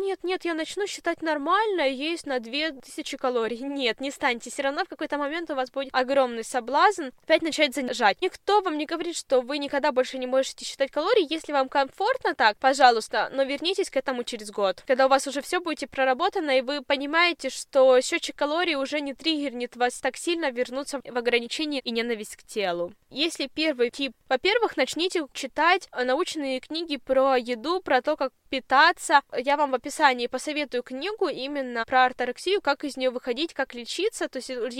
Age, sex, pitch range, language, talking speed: 10-29, female, 255-320 Hz, Russian, 180 wpm